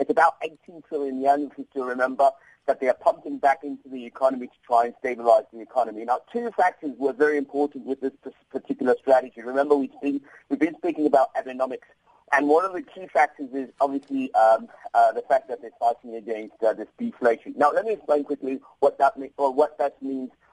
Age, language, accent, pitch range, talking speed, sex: 40-59, English, British, 125-150 Hz, 210 wpm, male